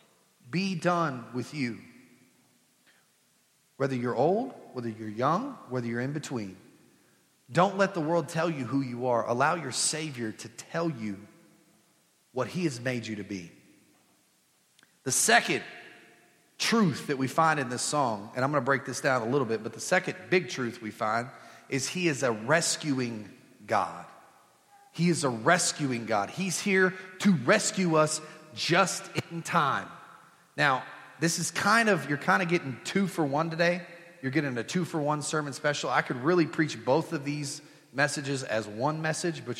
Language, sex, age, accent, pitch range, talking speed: English, male, 40-59, American, 125-170 Hz, 170 wpm